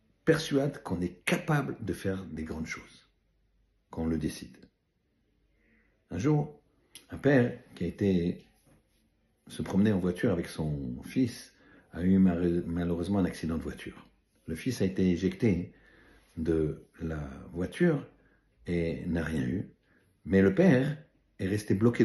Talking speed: 140 wpm